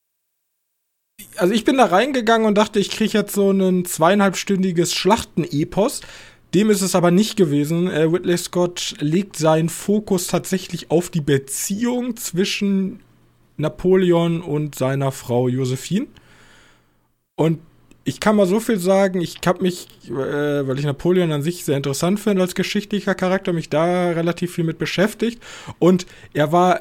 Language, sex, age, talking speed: German, male, 20-39, 150 wpm